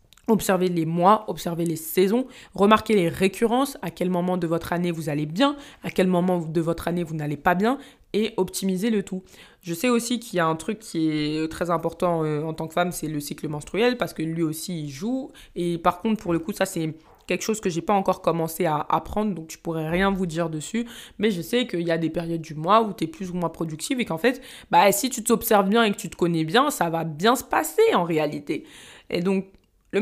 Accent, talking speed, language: French, 250 wpm, French